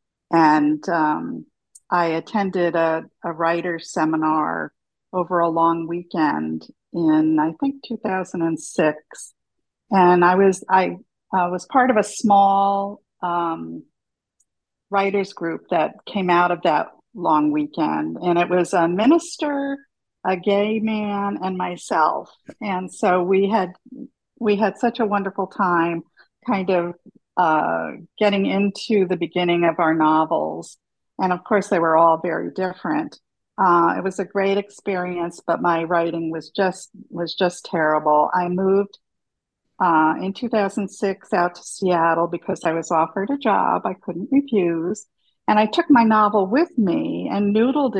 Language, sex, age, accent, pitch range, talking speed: English, female, 50-69, American, 170-210 Hz, 145 wpm